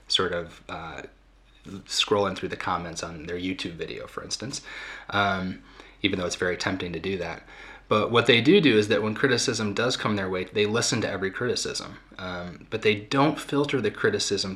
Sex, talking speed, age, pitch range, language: male, 195 wpm, 30-49, 100-120 Hz, English